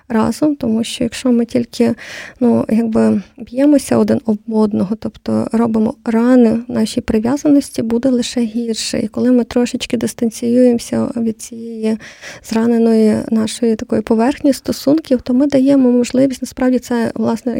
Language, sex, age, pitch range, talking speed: Ukrainian, female, 20-39, 225-250 Hz, 135 wpm